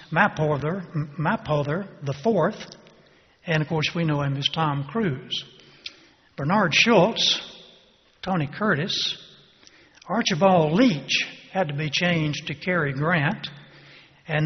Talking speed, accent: 115 wpm, American